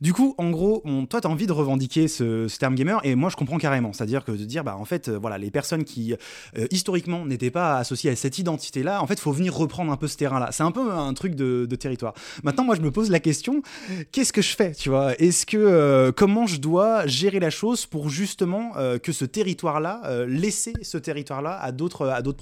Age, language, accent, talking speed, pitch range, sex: 20-39, French, French, 250 wpm, 130-175 Hz, male